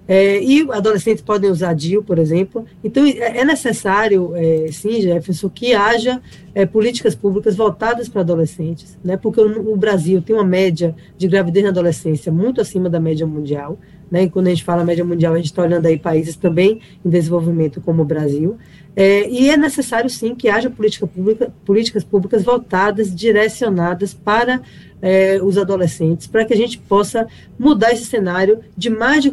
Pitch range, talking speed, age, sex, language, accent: 175-225 Hz, 180 wpm, 20-39, female, Portuguese, Brazilian